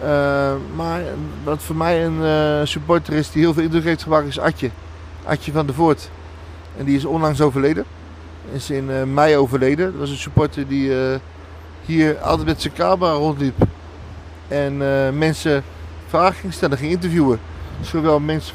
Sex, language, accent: male, Dutch, Dutch